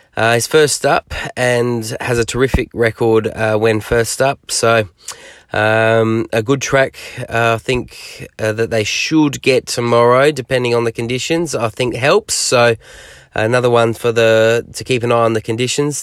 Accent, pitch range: Australian, 110-130 Hz